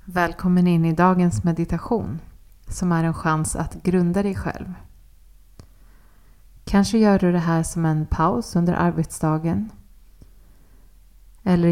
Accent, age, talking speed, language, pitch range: native, 30-49, 125 wpm, Swedish, 155-185 Hz